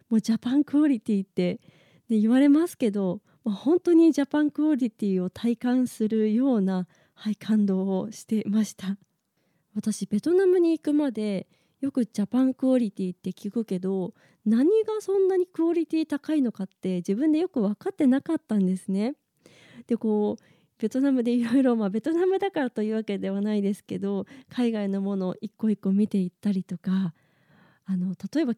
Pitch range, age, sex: 190-255 Hz, 20-39, female